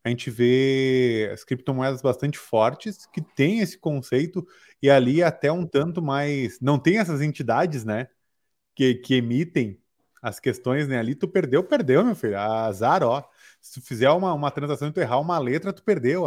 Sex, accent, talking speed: male, Brazilian, 180 wpm